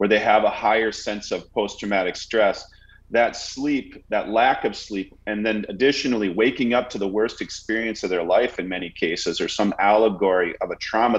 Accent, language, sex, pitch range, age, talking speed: American, English, male, 95-120 Hz, 40-59, 195 wpm